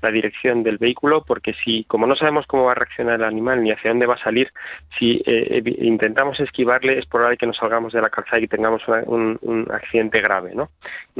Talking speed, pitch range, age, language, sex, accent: 220 wpm, 110-125 Hz, 20-39, Spanish, male, Spanish